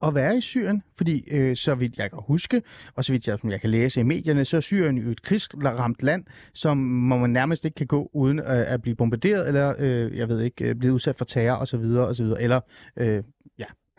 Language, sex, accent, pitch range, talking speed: Danish, male, native, 125-175 Hz, 240 wpm